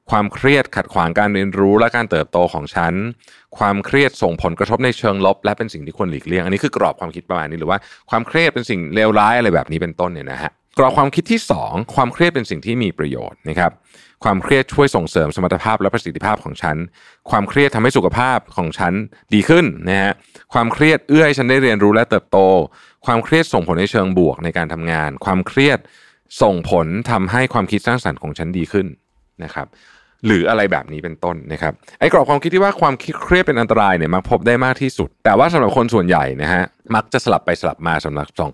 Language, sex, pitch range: Thai, male, 85-125 Hz